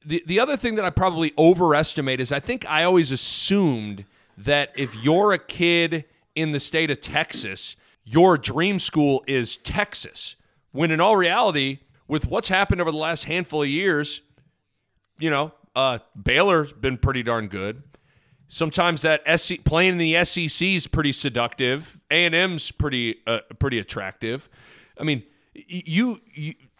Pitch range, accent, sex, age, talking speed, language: 135-175 Hz, American, male, 40-59, 160 wpm, English